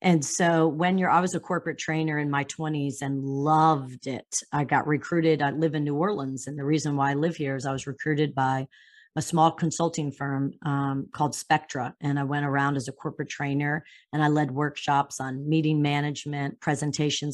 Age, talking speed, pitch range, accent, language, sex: 40-59, 200 wpm, 145-175 Hz, American, English, female